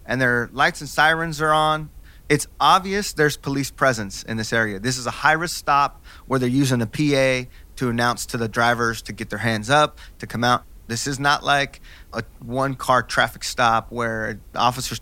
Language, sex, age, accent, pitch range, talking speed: English, male, 30-49, American, 115-145 Hz, 200 wpm